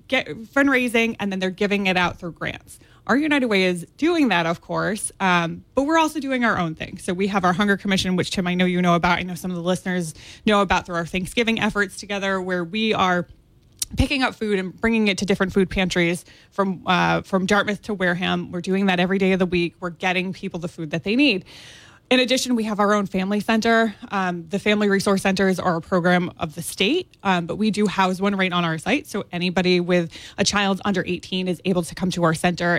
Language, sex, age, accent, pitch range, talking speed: English, female, 20-39, American, 180-215 Hz, 240 wpm